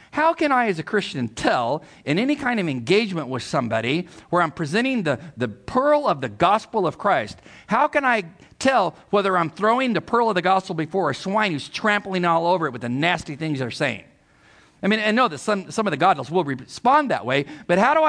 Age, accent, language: 50-69, American, English